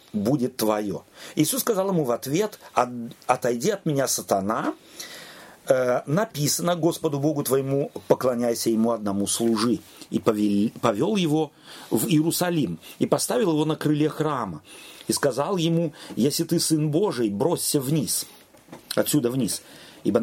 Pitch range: 115-170 Hz